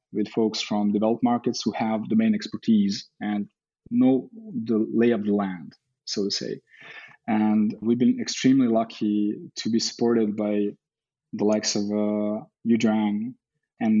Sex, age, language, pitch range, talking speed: male, 20-39, English, 105-140 Hz, 145 wpm